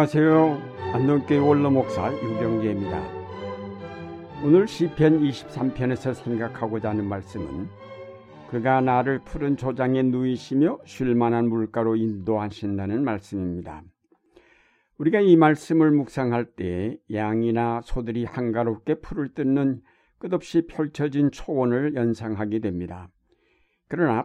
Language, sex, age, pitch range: Korean, male, 60-79, 110-145 Hz